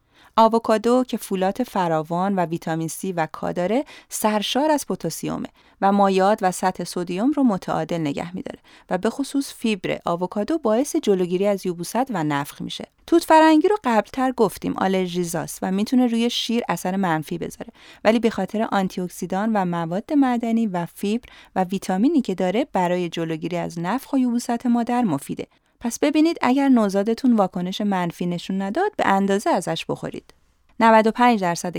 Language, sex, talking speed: Persian, female, 155 wpm